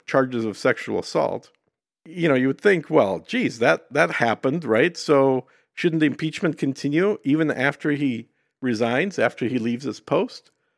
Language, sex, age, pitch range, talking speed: English, male, 50-69, 115-150 Hz, 160 wpm